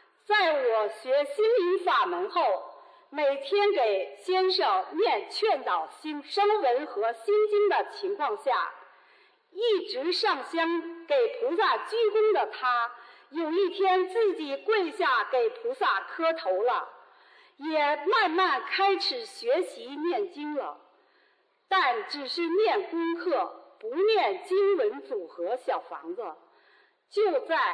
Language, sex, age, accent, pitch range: Chinese, female, 50-69, native, 325-420 Hz